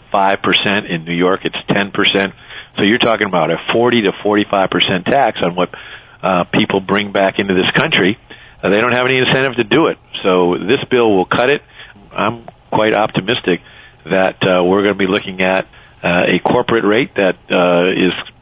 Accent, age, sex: American, 50-69, male